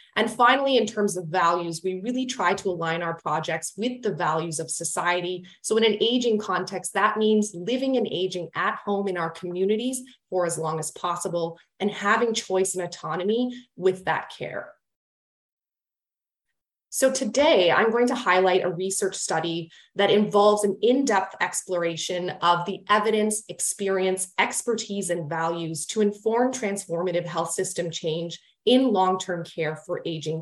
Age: 20-39